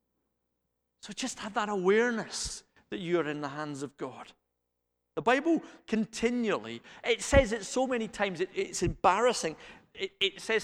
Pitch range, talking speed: 150-240 Hz, 150 wpm